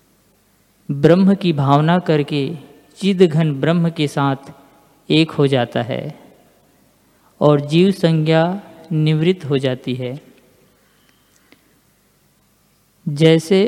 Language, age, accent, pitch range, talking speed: Hindi, 50-69, native, 140-175 Hz, 90 wpm